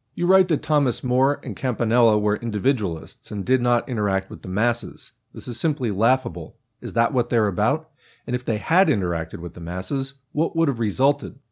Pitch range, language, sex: 105-135 Hz, English, male